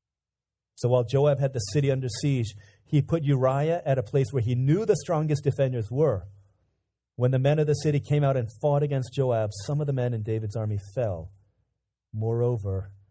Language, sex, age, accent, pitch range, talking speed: English, male, 30-49, American, 105-135 Hz, 190 wpm